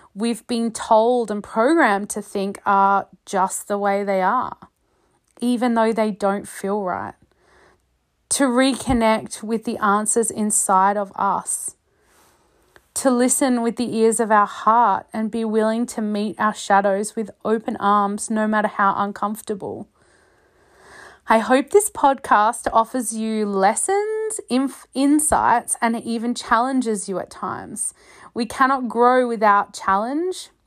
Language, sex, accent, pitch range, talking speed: English, female, Australian, 205-285 Hz, 135 wpm